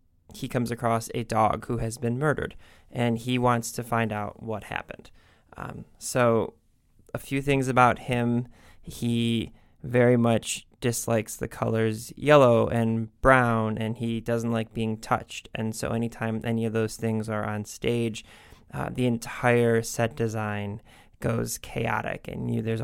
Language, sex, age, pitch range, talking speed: English, male, 20-39, 110-120 Hz, 150 wpm